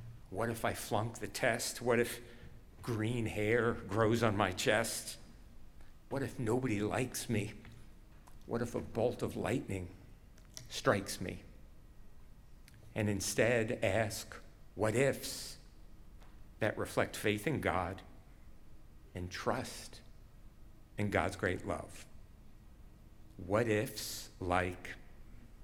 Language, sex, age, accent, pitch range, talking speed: English, male, 60-79, American, 100-120 Hz, 110 wpm